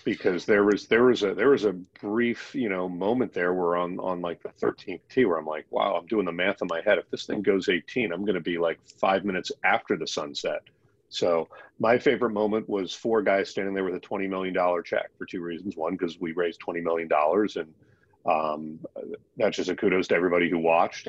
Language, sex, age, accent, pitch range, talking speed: English, male, 40-59, American, 85-105 Hz, 230 wpm